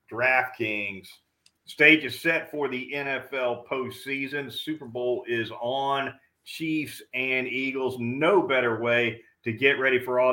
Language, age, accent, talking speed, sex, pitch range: English, 40-59, American, 135 wpm, male, 115-135 Hz